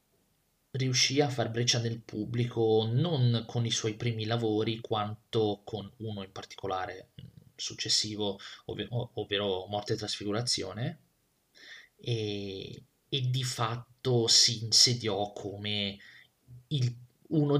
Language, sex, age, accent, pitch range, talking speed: Italian, male, 30-49, native, 105-125 Hz, 115 wpm